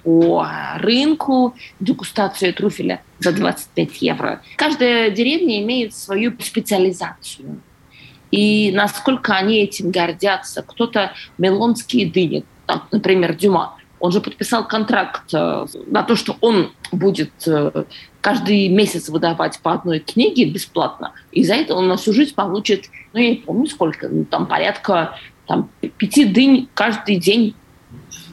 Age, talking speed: 20-39, 125 wpm